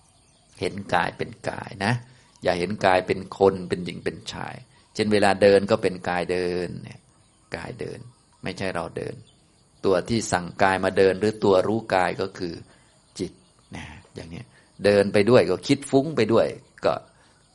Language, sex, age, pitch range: Thai, male, 30-49, 100-115 Hz